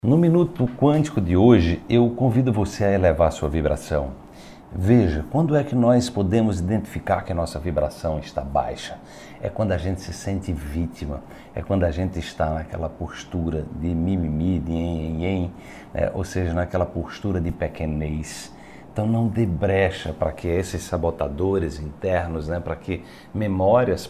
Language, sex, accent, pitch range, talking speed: Portuguese, male, Brazilian, 85-110 Hz, 160 wpm